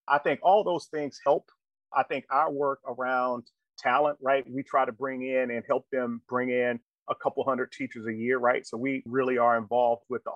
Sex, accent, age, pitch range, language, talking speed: male, American, 30-49, 115-140 Hz, English, 215 wpm